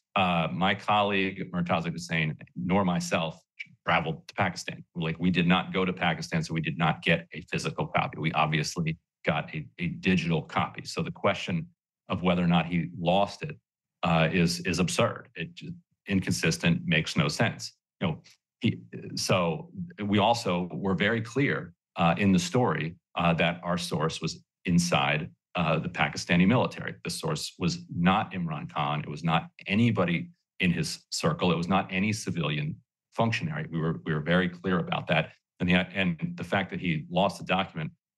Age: 40-59